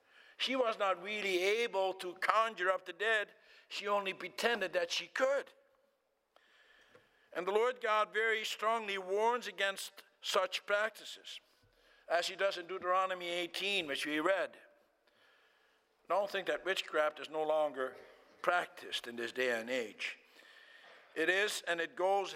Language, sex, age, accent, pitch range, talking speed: English, male, 60-79, American, 140-195 Hz, 140 wpm